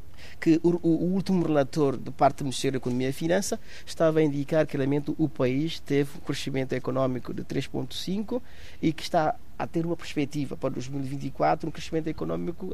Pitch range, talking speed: 135-185 Hz, 180 wpm